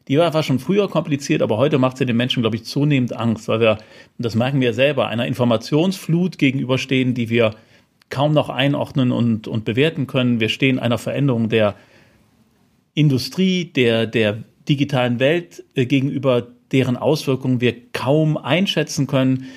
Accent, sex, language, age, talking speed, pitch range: German, male, German, 40-59, 155 wpm, 115-140 Hz